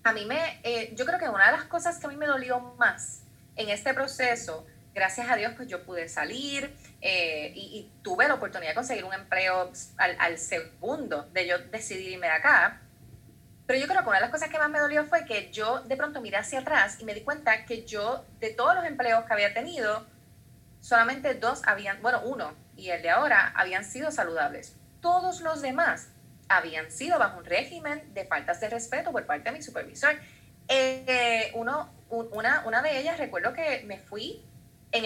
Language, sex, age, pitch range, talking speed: Spanish, female, 20-39, 195-285 Hz, 205 wpm